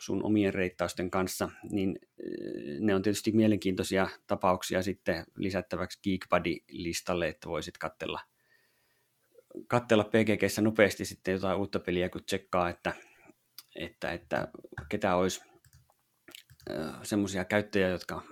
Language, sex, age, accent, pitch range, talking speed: Finnish, male, 30-49, native, 90-105 Hz, 110 wpm